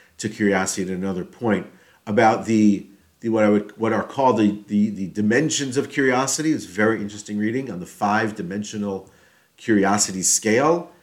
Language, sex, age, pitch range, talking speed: English, male, 50-69, 100-135 Hz, 170 wpm